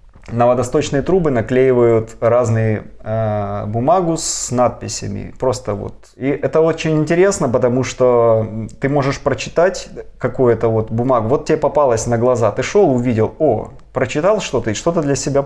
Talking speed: 150 wpm